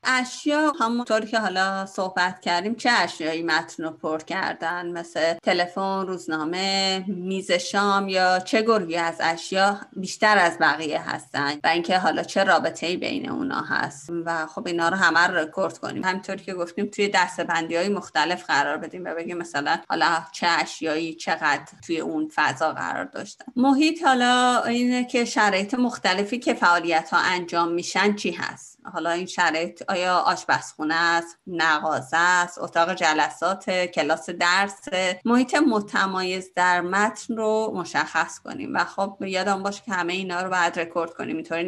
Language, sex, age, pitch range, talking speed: Persian, female, 30-49, 170-215 Hz, 155 wpm